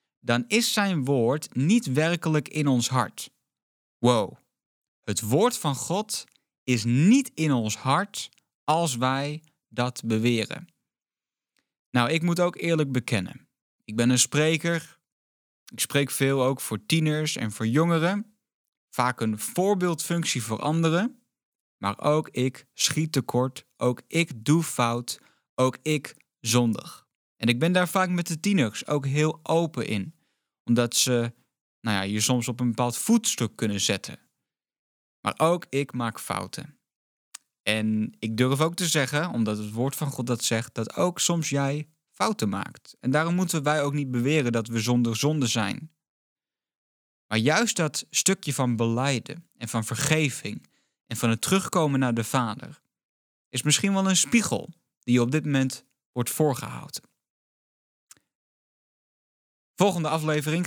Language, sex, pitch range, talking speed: Dutch, male, 120-160 Hz, 145 wpm